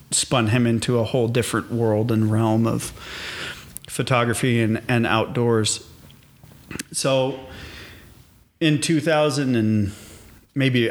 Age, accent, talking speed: 40-59, American, 105 wpm